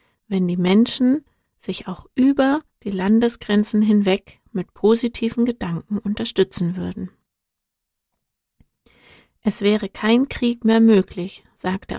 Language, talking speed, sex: German, 105 wpm, female